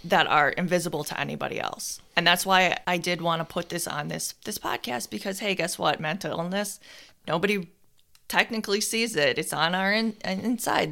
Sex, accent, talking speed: female, American, 180 wpm